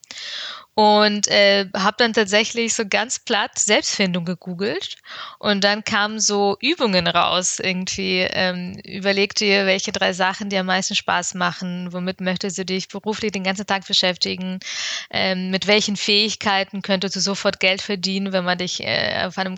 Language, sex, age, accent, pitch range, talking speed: German, female, 20-39, German, 185-210 Hz, 160 wpm